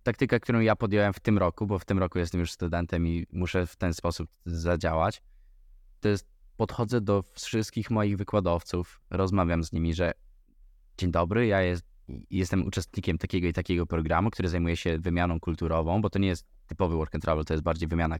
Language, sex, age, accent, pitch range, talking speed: Polish, male, 20-39, native, 85-100 Hz, 190 wpm